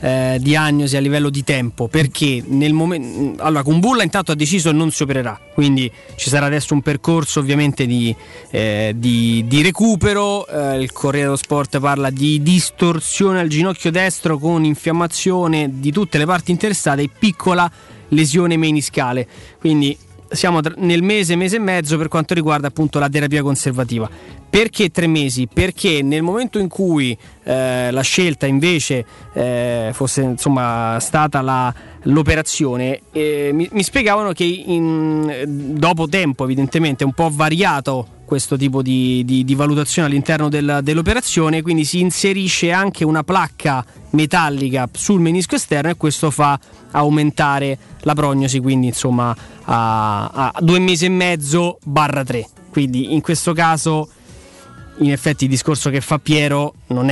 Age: 20-39